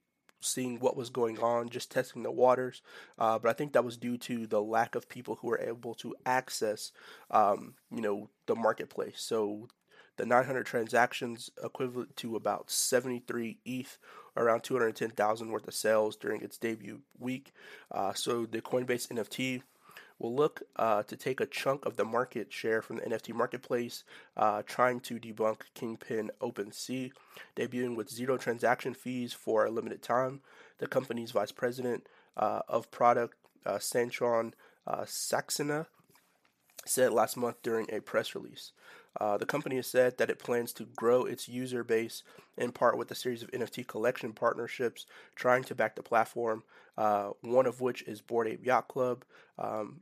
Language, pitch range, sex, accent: English, 115-125 Hz, male, American